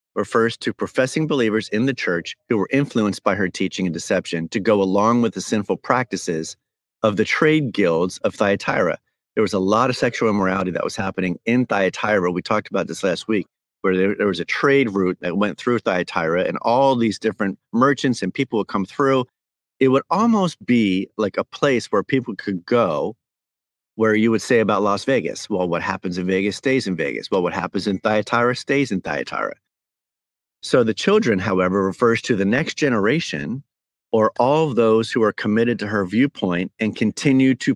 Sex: male